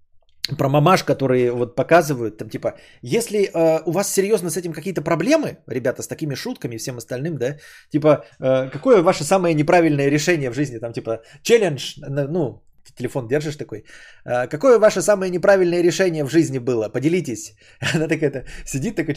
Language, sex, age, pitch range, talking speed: Bulgarian, male, 20-39, 125-180 Hz, 170 wpm